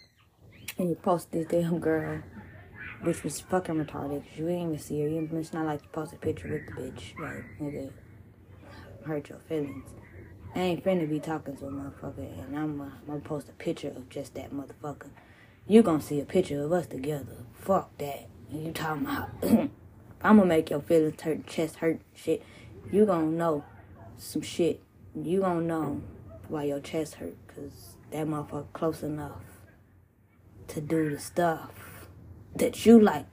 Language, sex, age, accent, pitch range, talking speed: English, female, 20-39, American, 105-165 Hz, 175 wpm